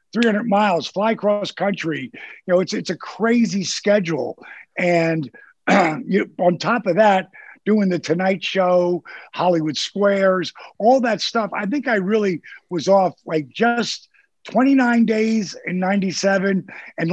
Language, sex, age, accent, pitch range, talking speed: English, male, 50-69, American, 170-215 Hz, 145 wpm